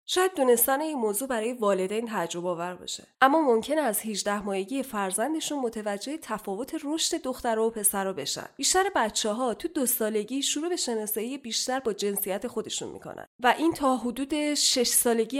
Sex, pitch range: female, 210-285 Hz